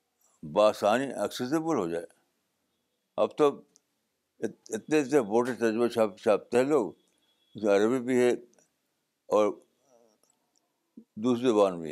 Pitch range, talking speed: 105-130 Hz, 105 wpm